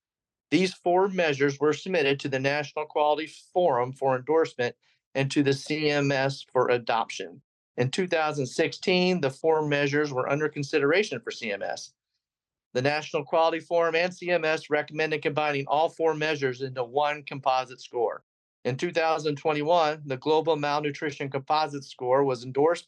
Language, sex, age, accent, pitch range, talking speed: English, male, 40-59, American, 135-170 Hz, 135 wpm